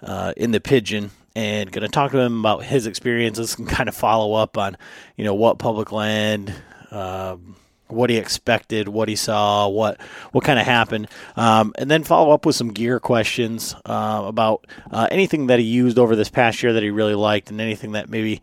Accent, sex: American, male